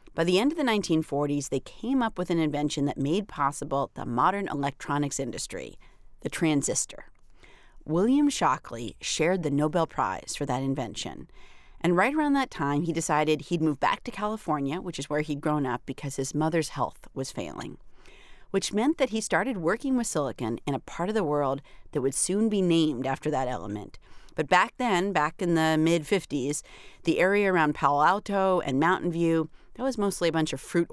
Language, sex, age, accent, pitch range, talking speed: English, female, 40-59, American, 140-195 Hz, 190 wpm